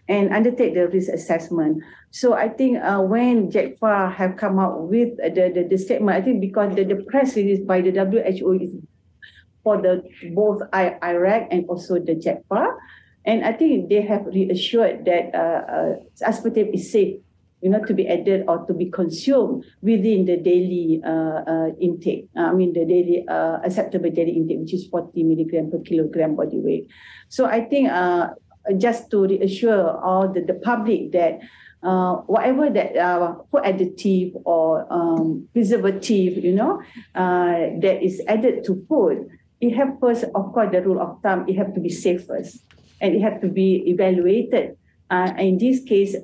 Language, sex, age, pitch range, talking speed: English, female, 50-69, 175-215 Hz, 175 wpm